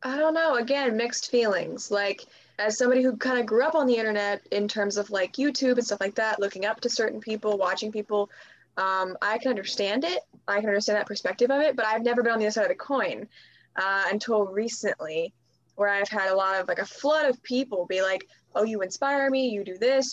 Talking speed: 235 wpm